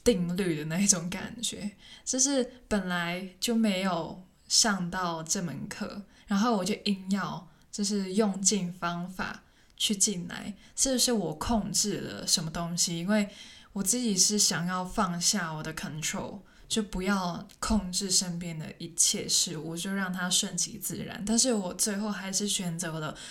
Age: 20-39